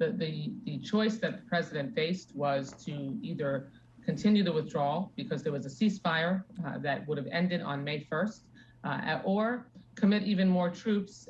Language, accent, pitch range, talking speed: English, American, 160-200 Hz, 175 wpm